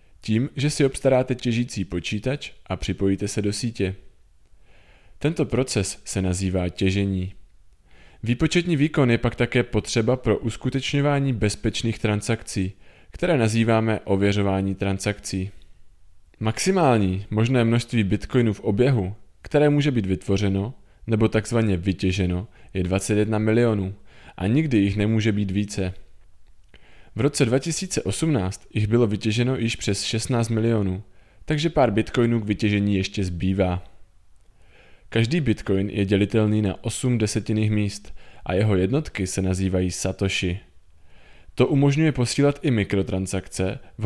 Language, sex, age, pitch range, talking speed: Czech, male, 20-39, 95-120 Hz, 120 wpm